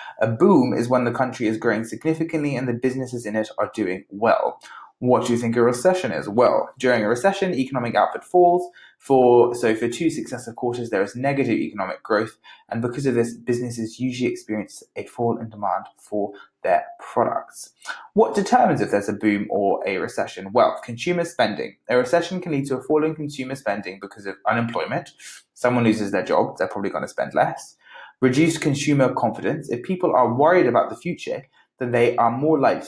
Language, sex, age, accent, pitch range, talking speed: English, male, 20-39, British, 115-155 Hz, 195 wpm